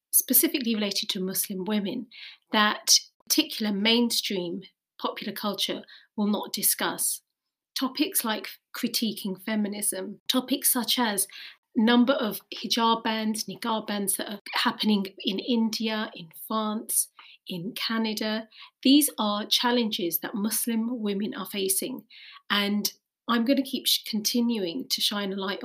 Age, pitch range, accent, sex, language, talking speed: 30-49, 195-245 Hz, British, female, English, 125 wpm